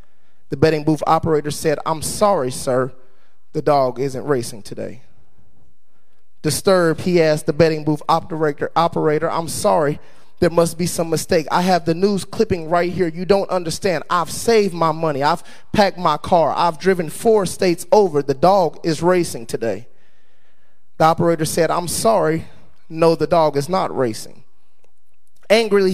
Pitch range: 155-190 Hz